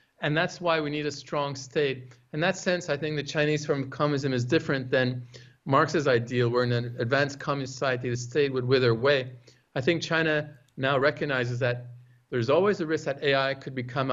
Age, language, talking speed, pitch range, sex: 50-69, English, 200 wpm, 125-150 Hz, male